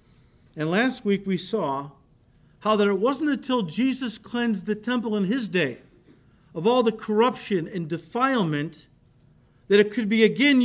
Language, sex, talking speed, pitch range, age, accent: English, male, 160 wpm, 150-225 Hz, 50-69, American